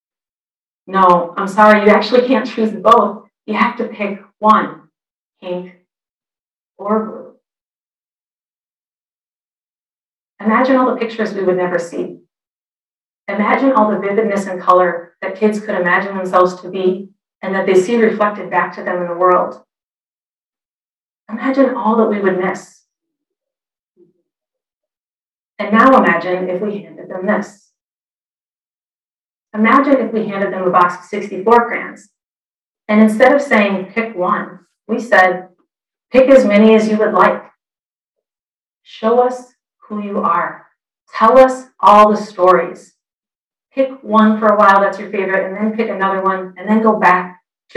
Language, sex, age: English, female, 40-59